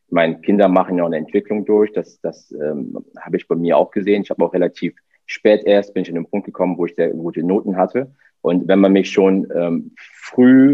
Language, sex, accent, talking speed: German, male, German, 235 wpm